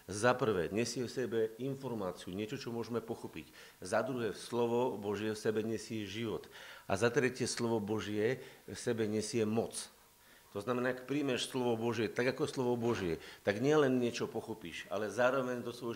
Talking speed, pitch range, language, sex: 170 wpm, 105-125 Hz, Slovak, male